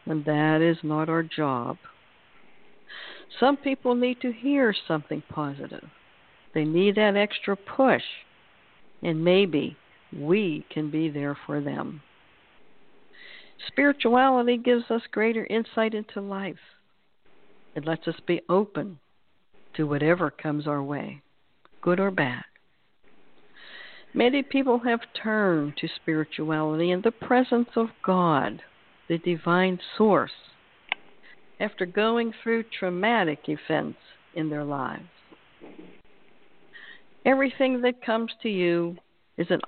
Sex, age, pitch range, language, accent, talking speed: female, 60-79, 155-230 Hz, English, American, 115 wpm